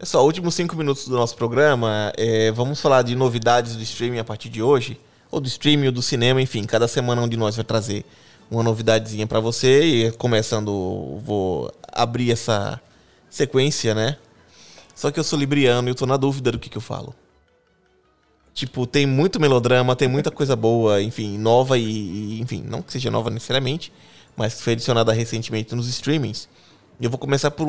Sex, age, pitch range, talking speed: male, 20-39, 110-135 Hz, 185 wpm